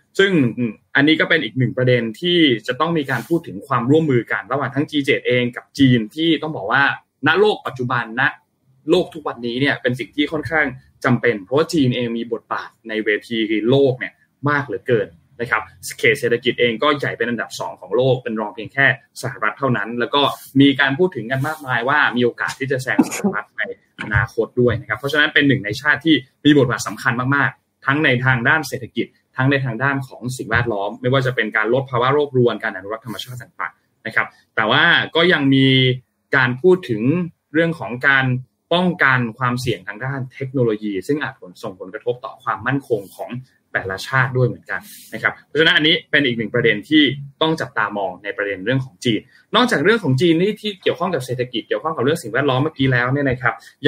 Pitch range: 120-145 Hz